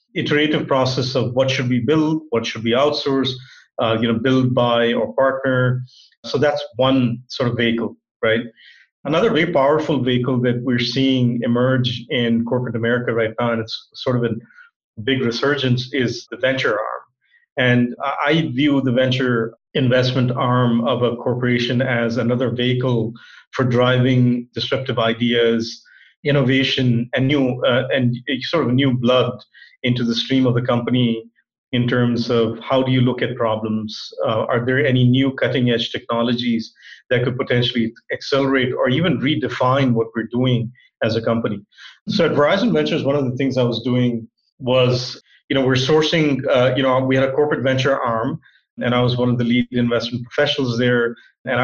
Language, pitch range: English, 120-135 Hz